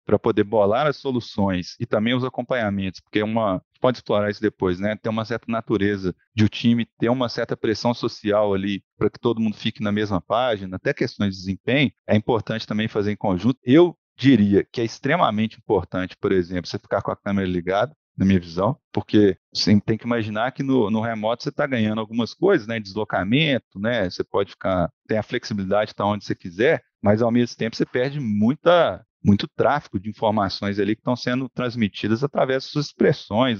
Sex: male